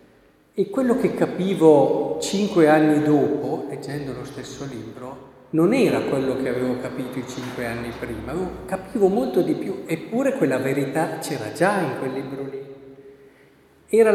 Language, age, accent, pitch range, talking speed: Italian, 50-69, native, 130-175 Hz, 150 wpm